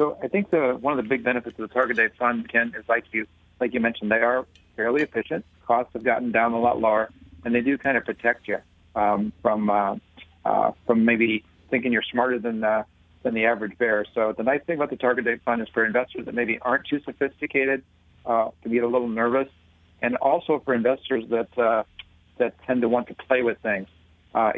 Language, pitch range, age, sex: English, 110-130 Hz, 40-59, male